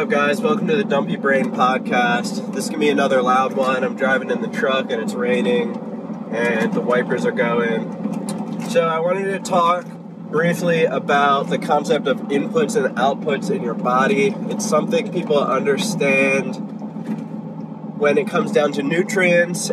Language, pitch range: English, 135-215 Hz